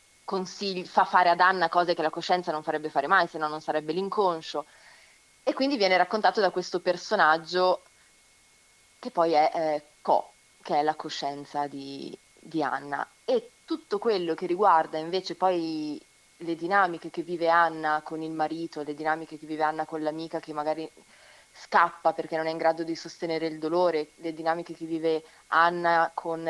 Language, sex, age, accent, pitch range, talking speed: Italian, female, 30-49, native, 155-180 Hz, 175 wpm